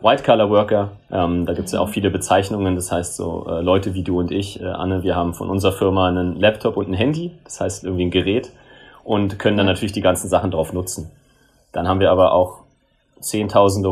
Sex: male